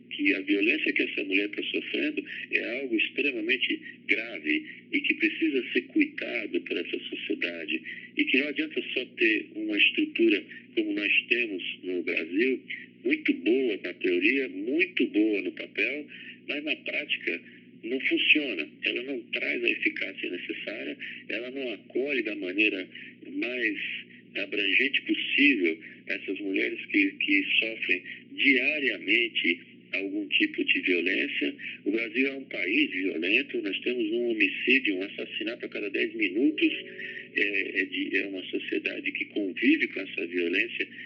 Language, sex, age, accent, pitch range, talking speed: Portuguese, male, 50-69, Brazilian, 310-345 Hz, 140 wpm